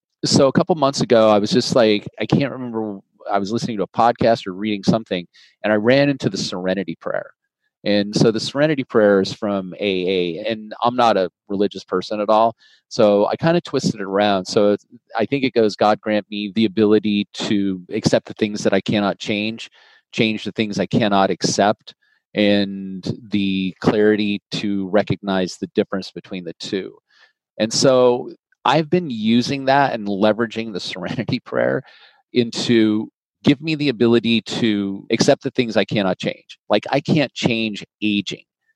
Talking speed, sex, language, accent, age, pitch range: 175 wpm, male, English, American, 30-49, 105-125 Hz